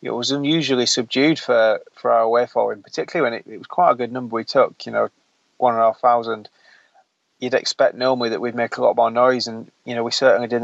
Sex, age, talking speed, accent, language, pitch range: male, 20-39, 250 wpm, British, English, 115-125 Hz